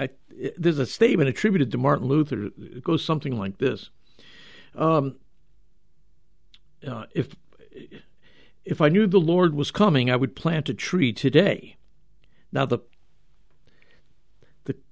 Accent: American